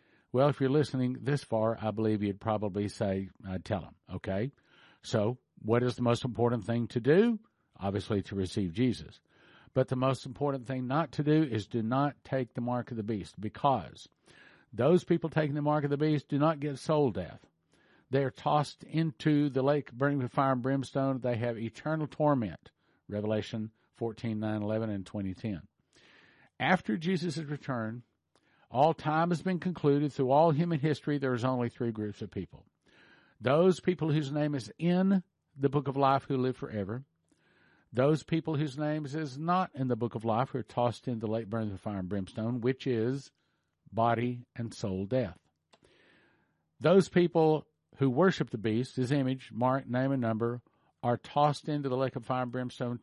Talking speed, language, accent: 180 wpm, English, American